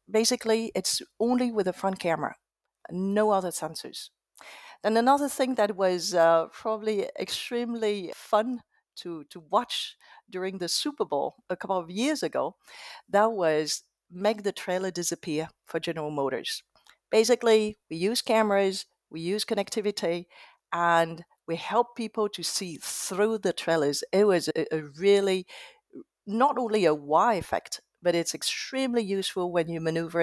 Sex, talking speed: female, 145 wpm